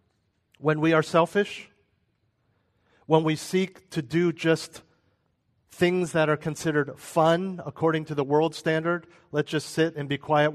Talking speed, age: 150 wpm, 40-59